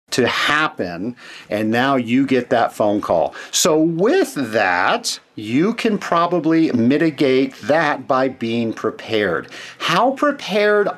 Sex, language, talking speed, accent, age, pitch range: male, English, 120 wpm, American, 50-69, 155-225 Hz